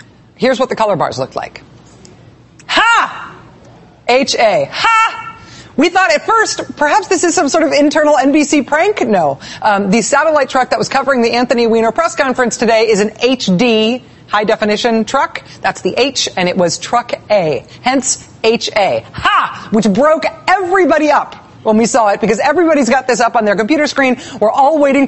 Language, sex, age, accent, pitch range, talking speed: English, female, 30-49, American, 210-280 Hz, 175 wpm